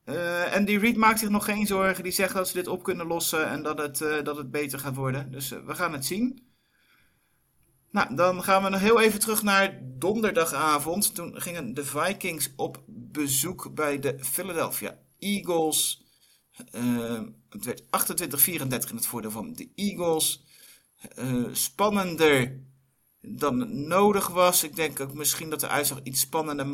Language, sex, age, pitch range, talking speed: Dutch, male, 50-69, 135-175 Hz, 175 wpm